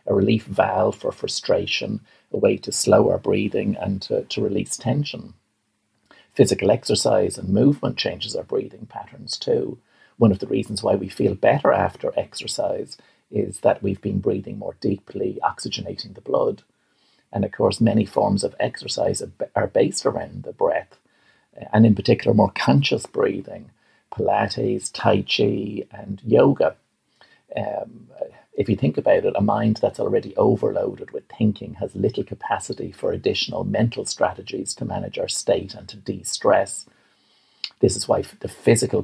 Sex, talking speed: male, 150 wpm